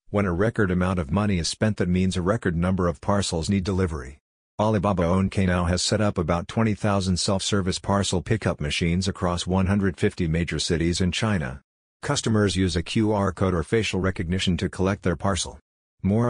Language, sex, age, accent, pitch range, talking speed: English, male, 50-69, American, 85-105 Hz, 175 wpm